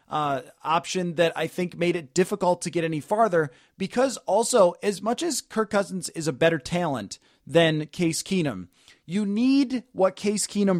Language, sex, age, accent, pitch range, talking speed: English, male, 30-49, American, 165-205 Hz, 170 wpm